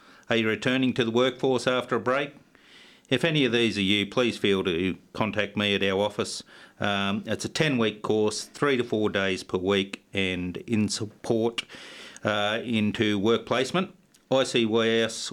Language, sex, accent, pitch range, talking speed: English, male, Australian, 100-125 Hz, 170 wpm